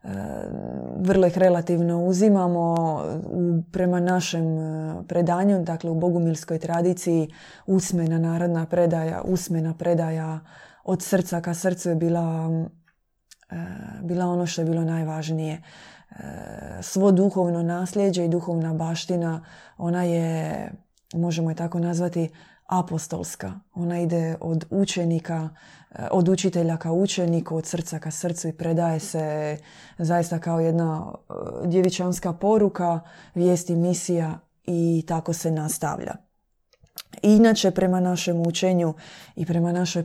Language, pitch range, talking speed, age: Croatian, 165-180 Hz, 110 wpm, 20-39